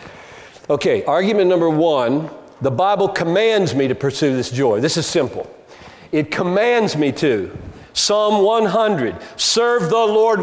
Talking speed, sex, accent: 140 wpm, male, American